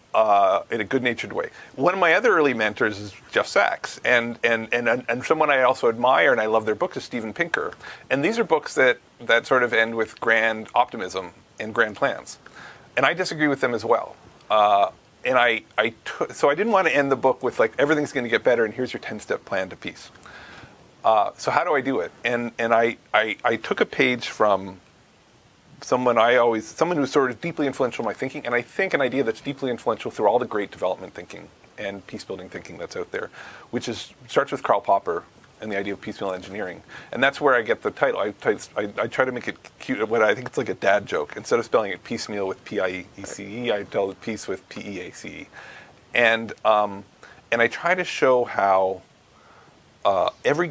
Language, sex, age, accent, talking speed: English, male, 40-59, American, 230 wpm